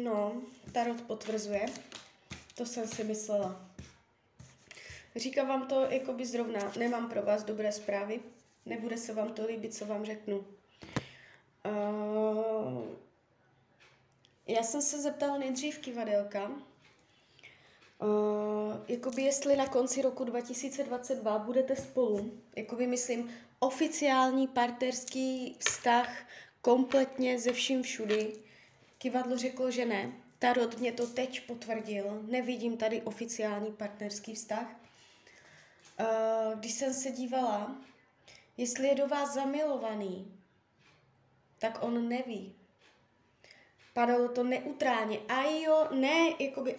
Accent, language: native, Czech